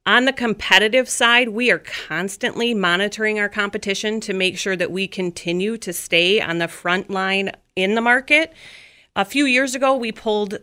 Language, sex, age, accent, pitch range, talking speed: English, female, 30-49, American, 185-235 Hz, 175 wpm